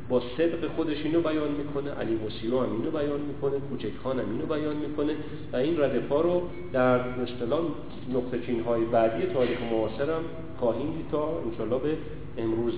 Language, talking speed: Persian, 155 wpm